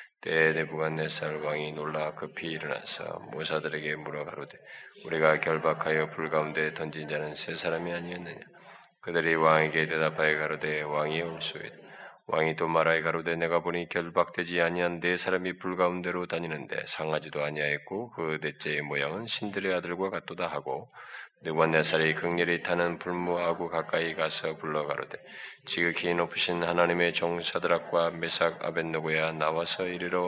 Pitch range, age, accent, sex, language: 80-85 Hz, 20-39, native, male, Korean